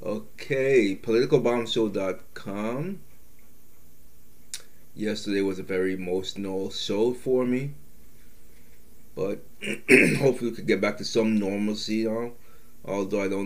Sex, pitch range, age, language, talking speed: male, 95-115 Hz, 30-49, English, 100 wpm